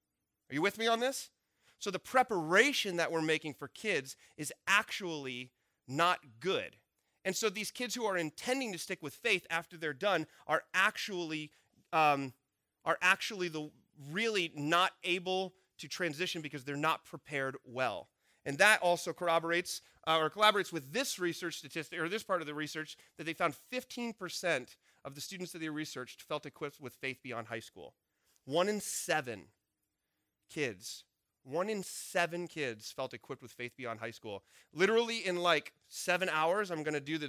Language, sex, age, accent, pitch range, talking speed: English, male, 30-49, American, 145-185 Hz, 170 wpm